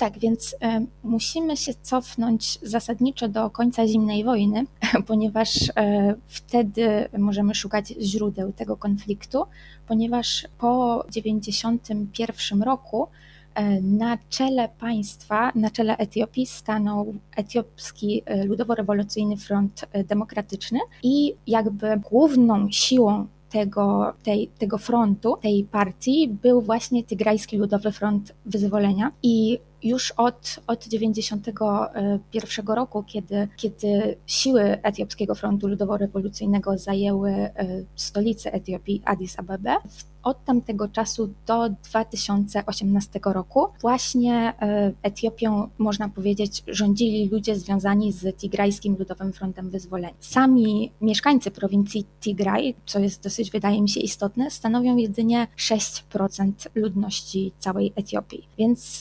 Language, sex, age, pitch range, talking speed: Polish, female, 20-39, 200-230 Hz, 100 wpm